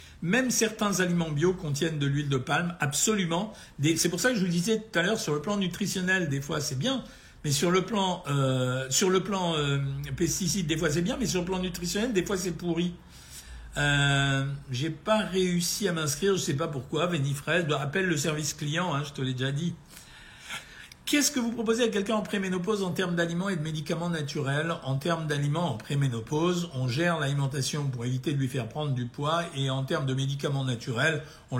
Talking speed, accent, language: 215 wpm, French, French